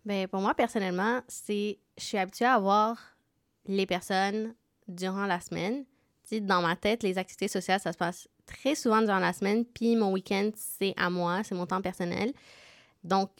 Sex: female